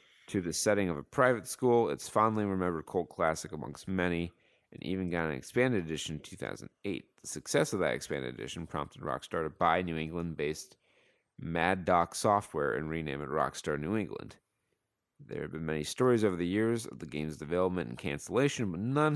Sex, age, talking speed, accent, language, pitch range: male, 30-49, 185 wpm, American, English, 75-100 Hz